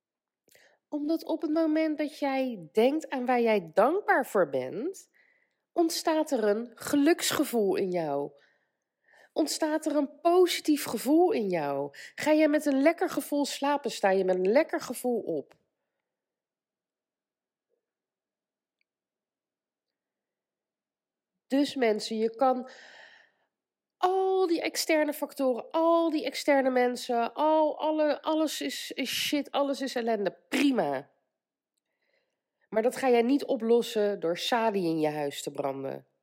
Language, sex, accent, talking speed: Dutch, female, Dutch, 120 wpm